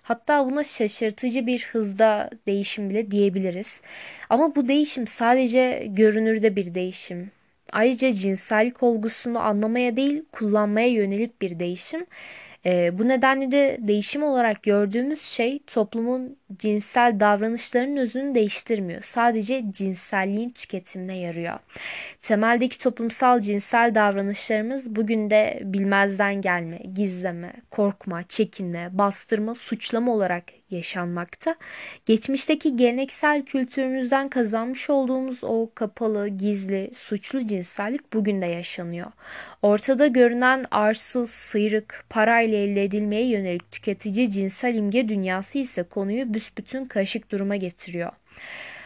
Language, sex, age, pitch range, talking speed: Turkish, female, 10-29, 200-250 Hz, 105 wpm